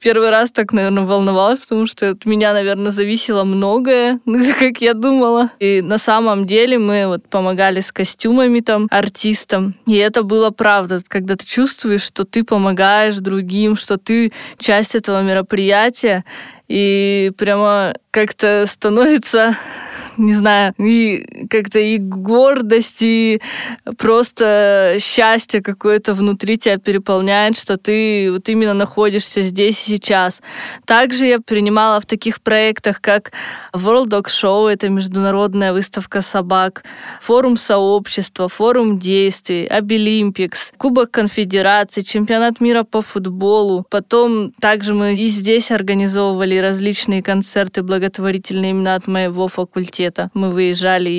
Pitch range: 195-225 Hz